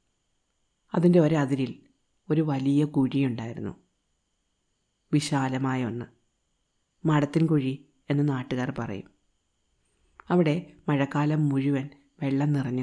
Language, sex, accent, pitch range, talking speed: Malayalam, female, native, 130-150 Hz, 80 wpm